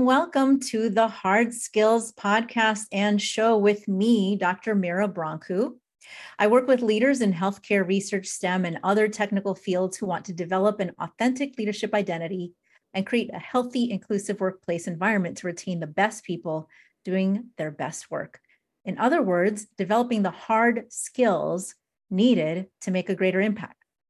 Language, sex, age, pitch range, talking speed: English, female, 30-49, 185-225 Hz, 155 wpm